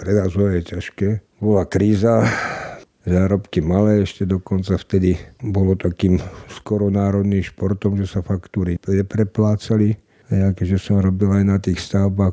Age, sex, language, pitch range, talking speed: 50-69, male, Slovak, 95-100 Hz, 125 wpm